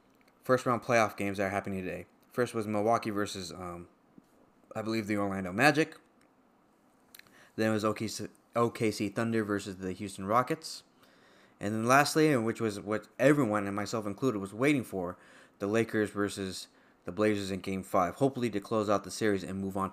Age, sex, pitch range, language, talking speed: 20-39, male, 100-125 Hz, English, 170 wpm